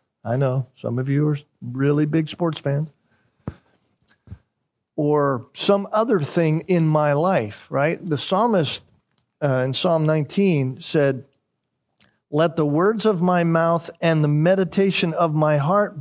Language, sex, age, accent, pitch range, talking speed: English, male, 50-69, American, 135-170 Hz, 140 wpm